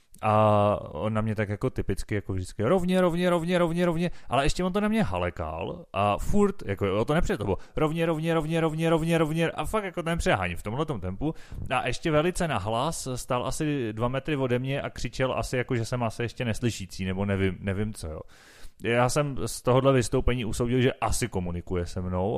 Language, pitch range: Czech, 100-130 Hz